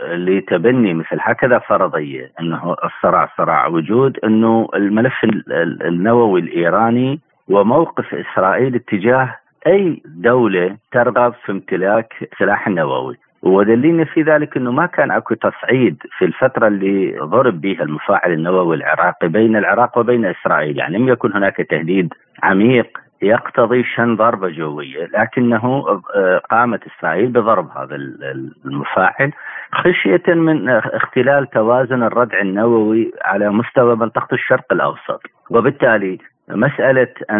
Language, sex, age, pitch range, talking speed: Arabic, male, 50-69, 95-130 Hz, 115 wpm